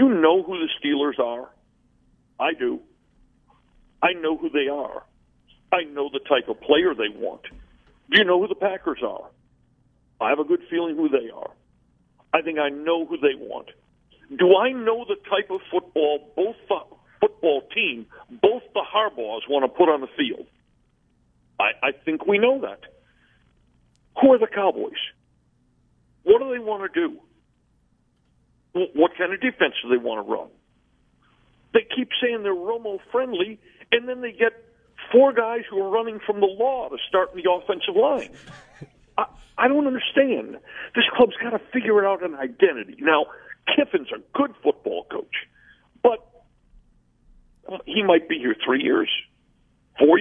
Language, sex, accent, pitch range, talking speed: English, male, American, 170-290 Hz, 165 wpm